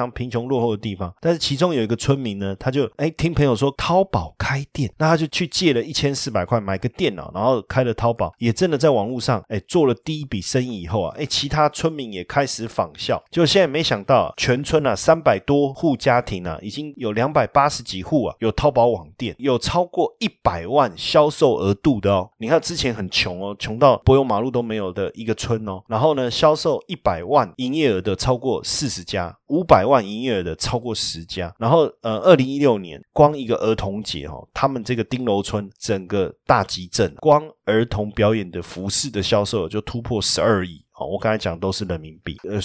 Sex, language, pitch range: male, Chinese, 100-140 Hz